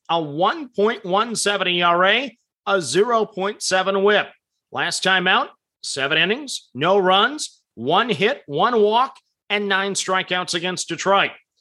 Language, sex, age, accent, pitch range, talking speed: English, male, 40-59, American, 175-215 Hz, 115 wpm